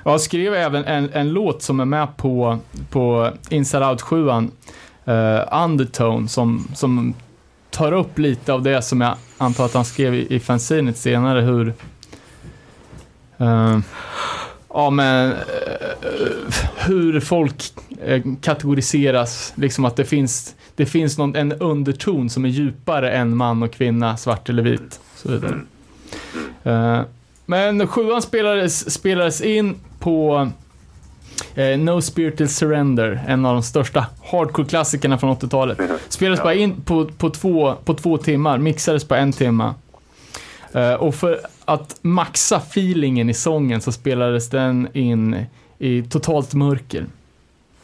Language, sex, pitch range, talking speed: Swedish, male, 120-160 Hz, 135 wpm